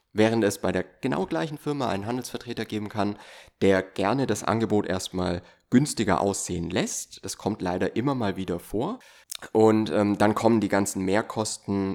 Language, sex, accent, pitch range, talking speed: German, male, German, 95-115 Hz, 165 wpm